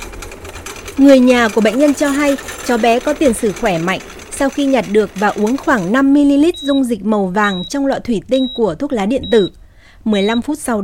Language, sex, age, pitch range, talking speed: Vietnamese, female, 20-39, 215-280 Hz, 210 wpm